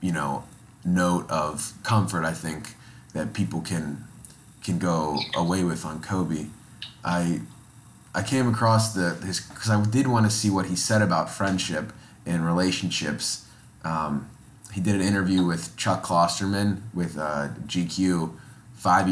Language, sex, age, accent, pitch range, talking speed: English, male, 20-39, American, 85-100 Hz, 150 wpm